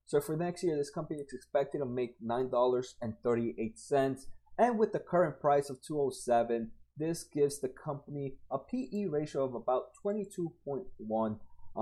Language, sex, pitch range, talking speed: English, male, 120-155 Hz, 160 wpm